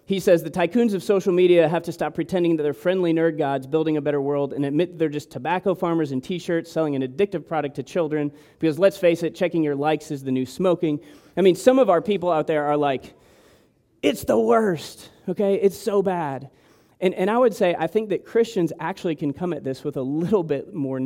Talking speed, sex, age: 230 wpm, male, 30-49